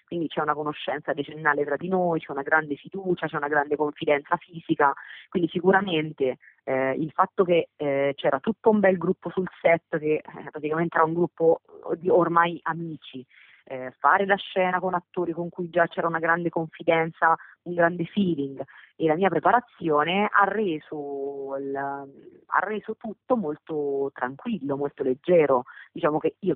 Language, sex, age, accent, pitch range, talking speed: Italian, female, 30-49, native, 150-200 Hz, 165 wpm